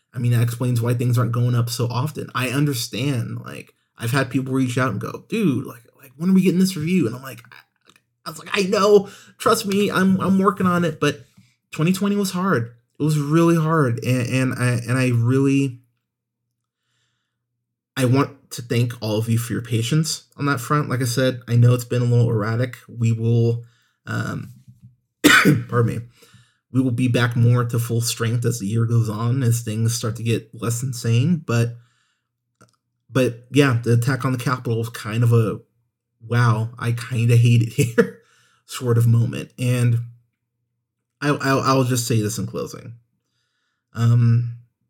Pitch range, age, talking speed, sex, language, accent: 115-130 Hz, 30-49, 185 wpm, male, English, American